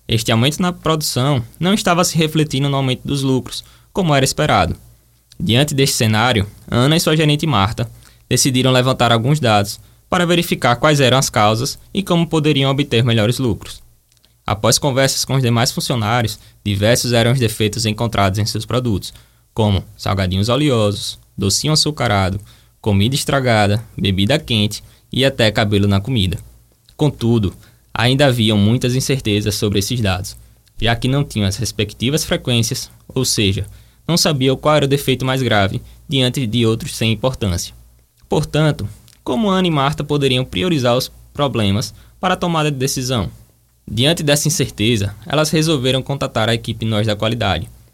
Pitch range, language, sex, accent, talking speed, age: 105-140 Hz, Portuguese, male, Brazilian, 155 wpm, 20-39